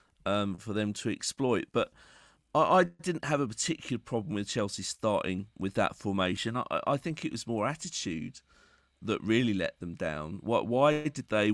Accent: British